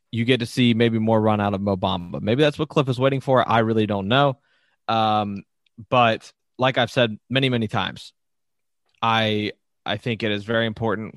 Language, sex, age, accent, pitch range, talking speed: English, male, 20-39, American, 100-125 Hz, 200 wpm